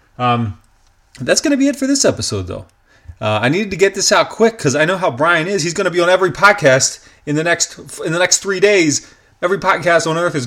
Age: 30-49